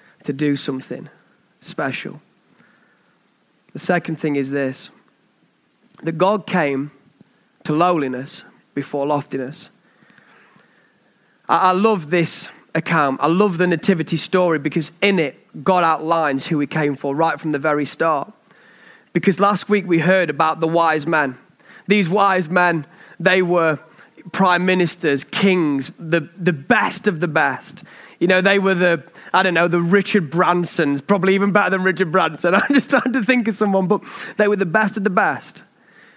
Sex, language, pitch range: male, English, 155-195 Hz